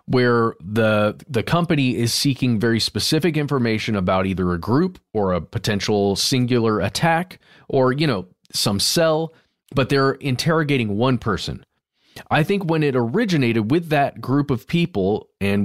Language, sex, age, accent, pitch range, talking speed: English, male, 30-49, American, 105-140 Hz, 150 wpm